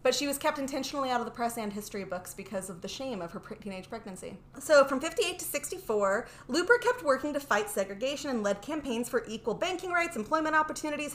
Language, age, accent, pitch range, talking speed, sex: English, 30-49, American, 220-305 Hz, 215 wpm, female